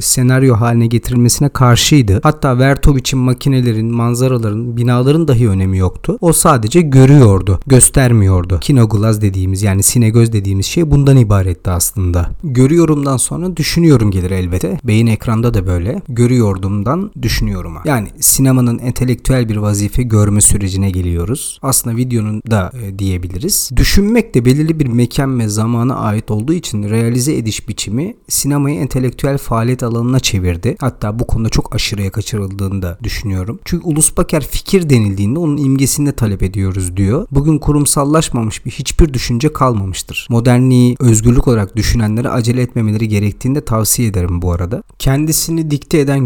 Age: 40-59